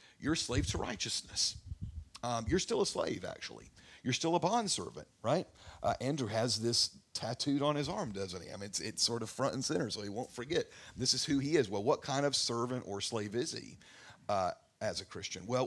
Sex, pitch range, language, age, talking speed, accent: male, 110-150 Hz, English, 50-69, 220 wpm, American